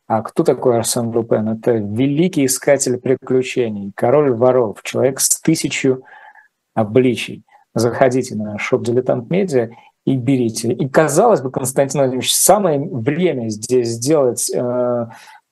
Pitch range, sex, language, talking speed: 125-145 Hz, male, Russian, 115 wpm